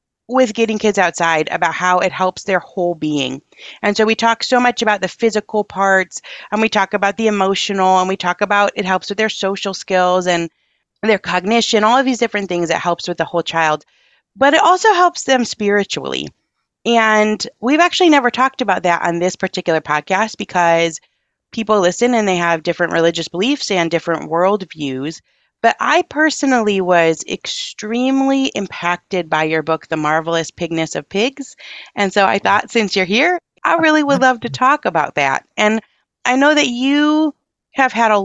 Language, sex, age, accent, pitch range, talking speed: English, female, 30-49, American, 170-245 Hz, 185 wpm